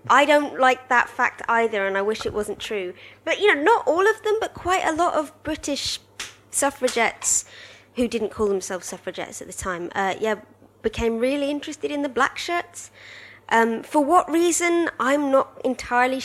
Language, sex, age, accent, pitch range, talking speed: English, female, 20-39, British, 190-250 Hz, 185 wpm